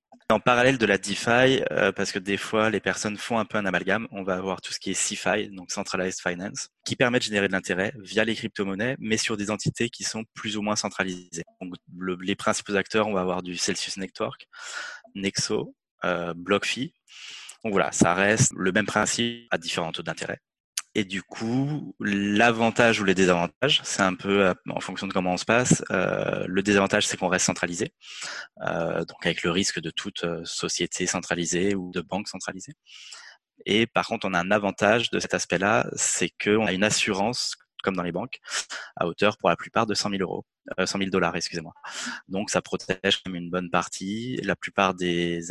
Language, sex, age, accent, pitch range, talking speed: French, male, 20-39, French, 90-105 Hz, 200 wpm